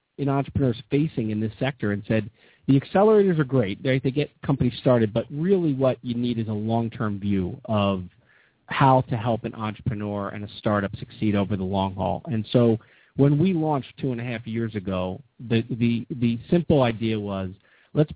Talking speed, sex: 190 wpm, male